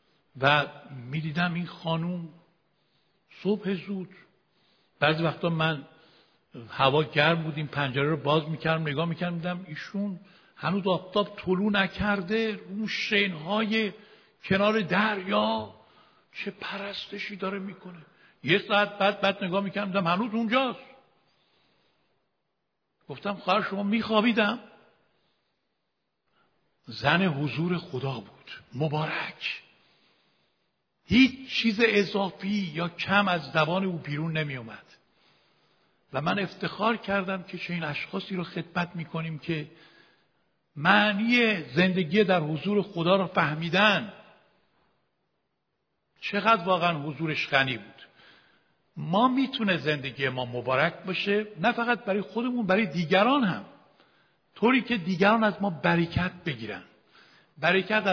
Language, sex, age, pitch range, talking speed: Persian, male, 60-79, 160-205 Hz, 110 wpm